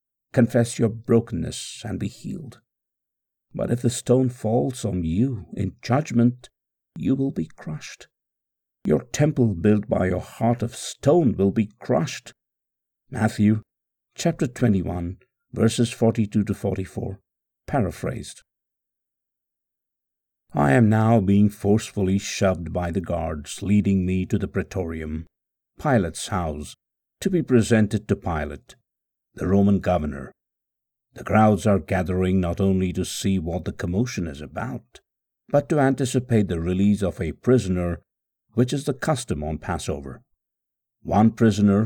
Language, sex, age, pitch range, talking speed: English, male, 60-79, 90-120 Hz, 130 wpm